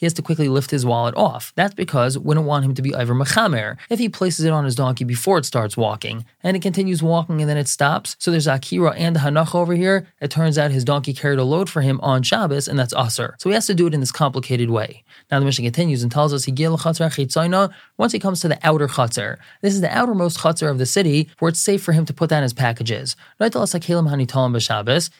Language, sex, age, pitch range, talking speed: English, male, 20-39, 130-170 Hz, 245 wpm